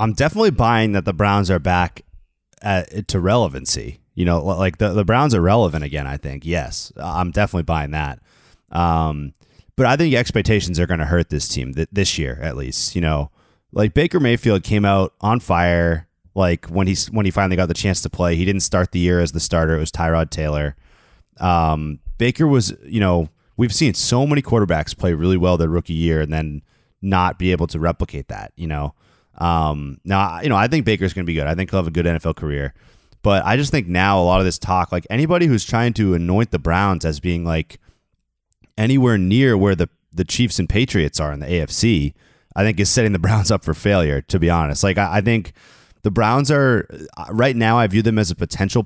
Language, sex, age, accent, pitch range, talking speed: English, male, 30-49, American, 80-105 Hz, 215 wpm